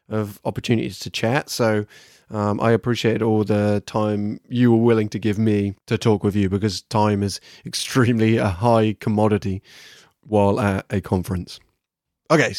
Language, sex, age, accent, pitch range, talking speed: English, male, 20-39, British, 105-130 Hz, 155 wpm